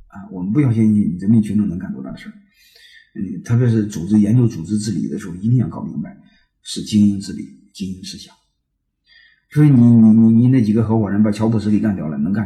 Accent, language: native, Chinese